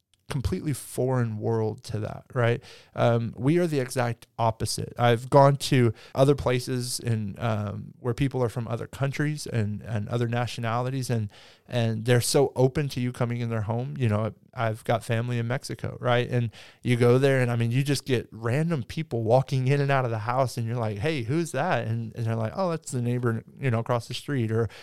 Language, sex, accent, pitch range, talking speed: English, male, American, 115-145 Hz, 210 wpm